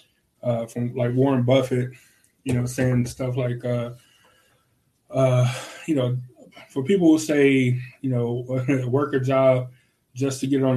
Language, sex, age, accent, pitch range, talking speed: English, male, 20-39, American, 125-140 Hz, 155 wpm